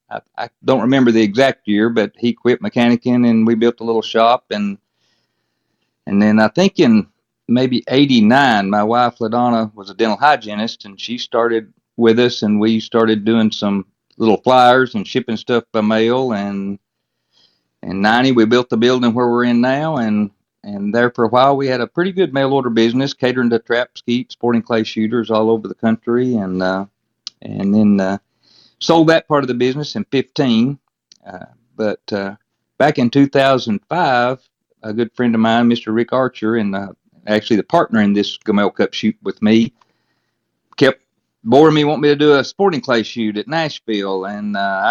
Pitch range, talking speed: 110-135 Hz, 185 wpm